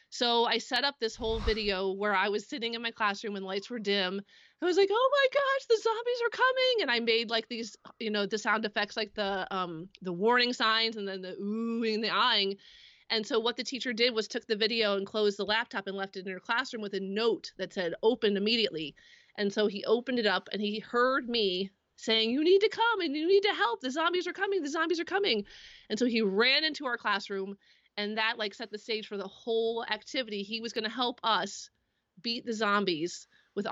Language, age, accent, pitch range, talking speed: English, 30-49, American, 200-240 Hz, 235 wpm